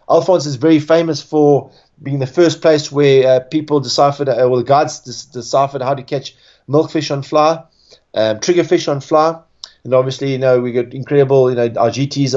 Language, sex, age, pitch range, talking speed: English, male, 30-49, 130-155 Hz, 190 wpm